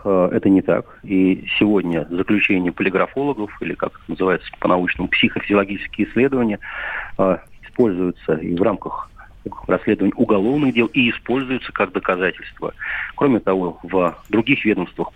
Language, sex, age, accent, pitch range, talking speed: Russian, male, 40-59, native, 95-120 Hz, 120 wpm